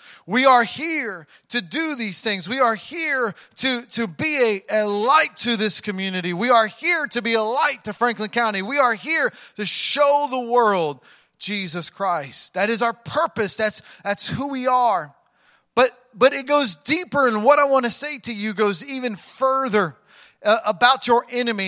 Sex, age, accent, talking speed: male, 30-49, American, 185 wpm